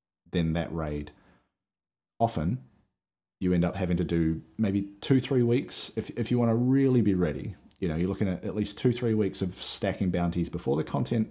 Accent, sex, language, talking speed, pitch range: Australian, male, English, 200 wpm, 85-105 Hz